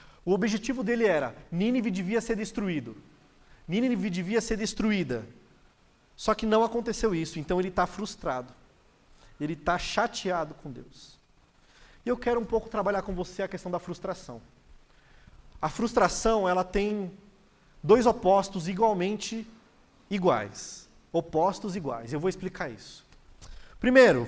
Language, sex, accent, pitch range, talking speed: Portuguese, male, Brazilian, 165-220 Hz, 130 wpm